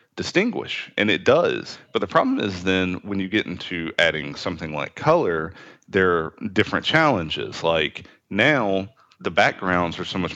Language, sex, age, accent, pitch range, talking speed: English, male, 30-49, American, 85-105 Hz, 160 wpm